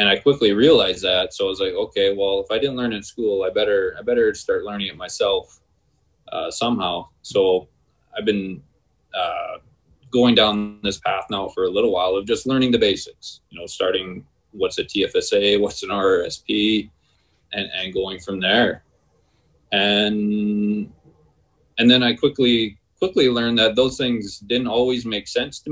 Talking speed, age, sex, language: 175 wpm, 20-39, male, English